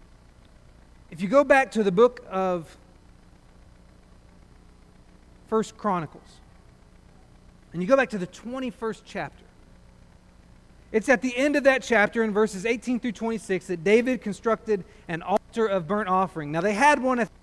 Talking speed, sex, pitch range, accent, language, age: 150 wpm, male, 150-230 Hz, American, English, 40-59